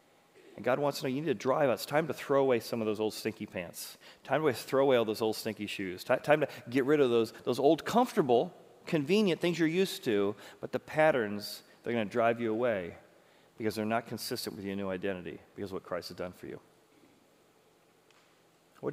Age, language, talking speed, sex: 40-59, English, 220 wpm, male